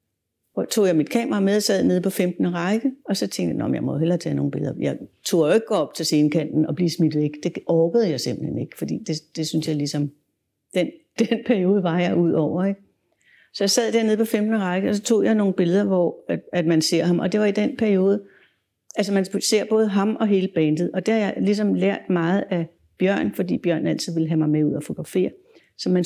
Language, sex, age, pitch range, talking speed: Danish, female, 60-79, 155-210 Hz, 240 wpm